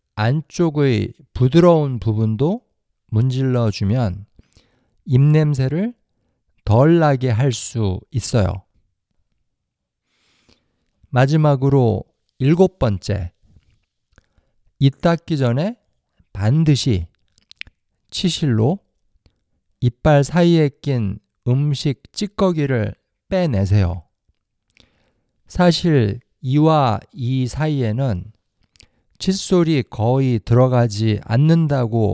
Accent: native